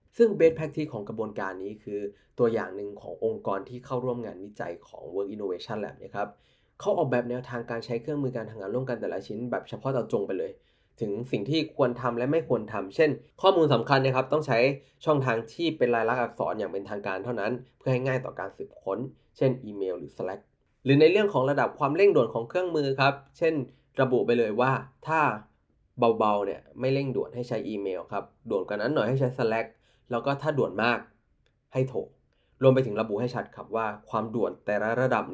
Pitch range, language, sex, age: 110-140 Hz, Thai, male, 20-39